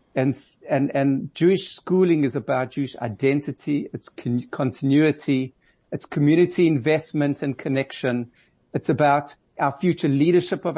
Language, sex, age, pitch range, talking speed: English, male, 60-79, 135-170 Hz, 130 wpm